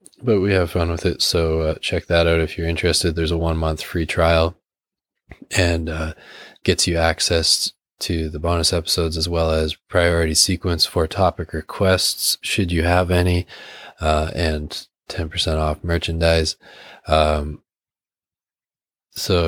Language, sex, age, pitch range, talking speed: English, male, 20-39, 80-90 Hz, 150 wpm